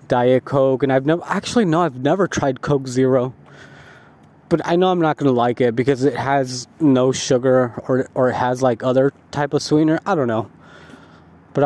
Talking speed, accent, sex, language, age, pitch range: 200 wpm, American, male, English, 20-39, 125-165 Hz